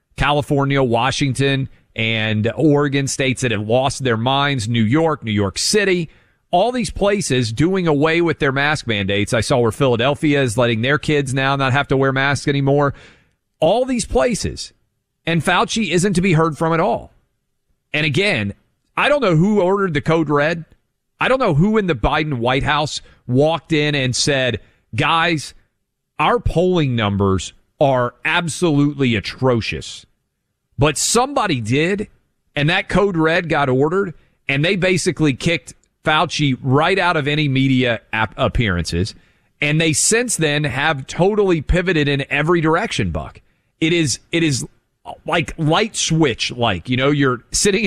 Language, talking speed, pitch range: English, 160 wpm, 130-170 Hz